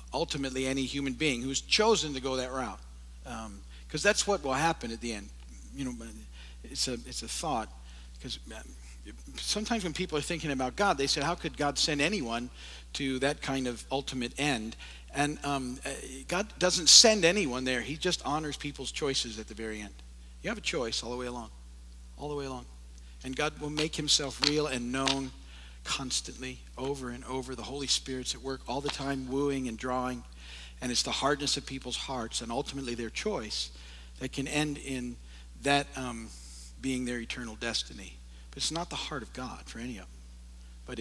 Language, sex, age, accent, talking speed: English, male, 50-69, American, 190 wpm